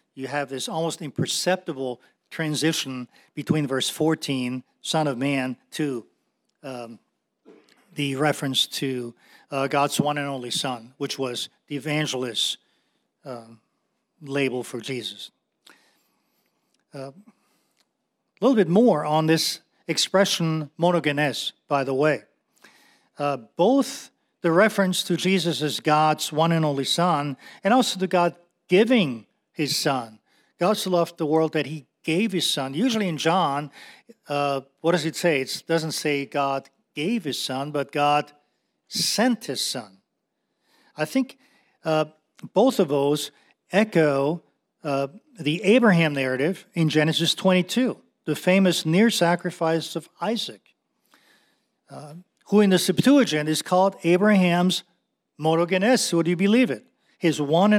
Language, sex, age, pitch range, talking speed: English, male, 50-69, 140-185 Hz, 130 wpm